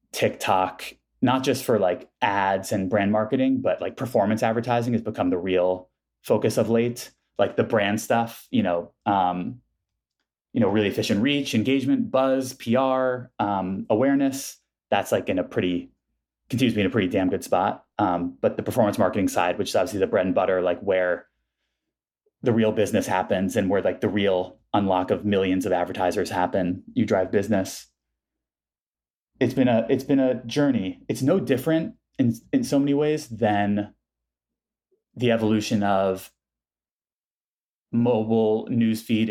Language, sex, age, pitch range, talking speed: English, male, 20-39, 95-130 Hz, 160 wpm